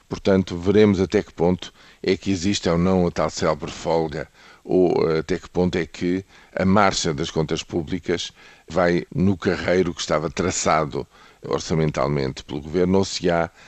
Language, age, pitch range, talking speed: Portuguese, 50-69, 80-100 Hz, 160 wpm